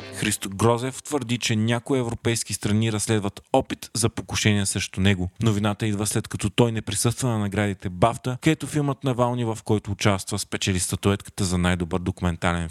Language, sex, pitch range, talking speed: Bulgarian, male, 100-120 Hz, 160 wpm